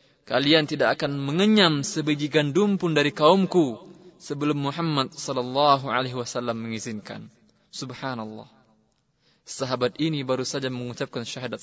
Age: 20-39